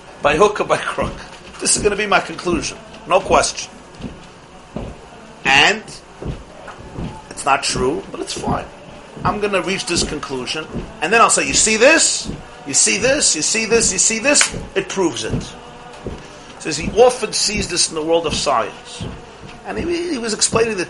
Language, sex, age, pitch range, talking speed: English, male, 50-69, 150-200 Hz, 180 wpm